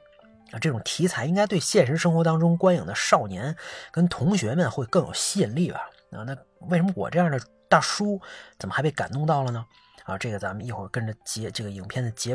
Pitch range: 115-170 Hz